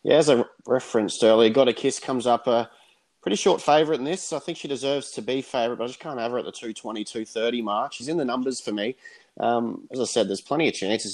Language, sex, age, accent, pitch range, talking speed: English, male, 20-39, Australian, 110-125 Hz, 255 wpm